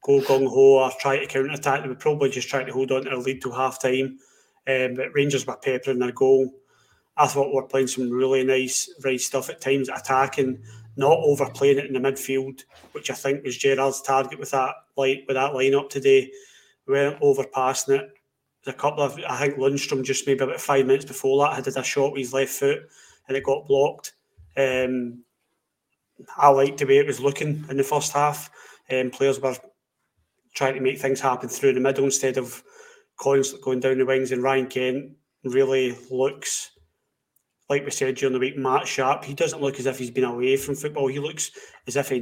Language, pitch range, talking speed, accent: English, 130-140 Hz, 210 wpm, British